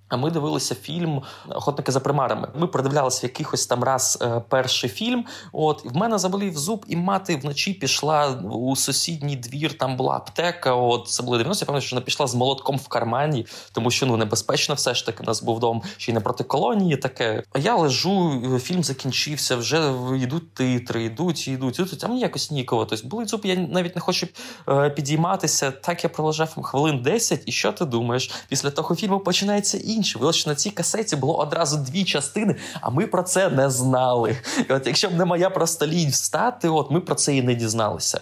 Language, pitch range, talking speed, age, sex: Ukrainian, 125-165 Hz, 195 wpm, 20-39, male